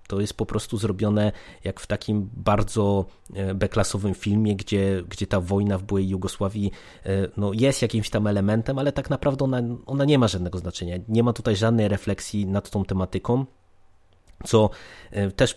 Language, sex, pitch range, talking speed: Polish, male, 95-110 Hz, 160 wpm